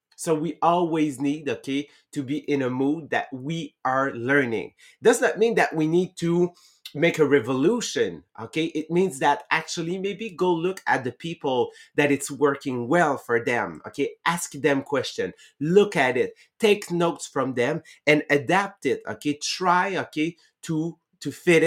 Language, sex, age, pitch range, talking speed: English, male, 30-49, 140-175 Hz, 170 wpm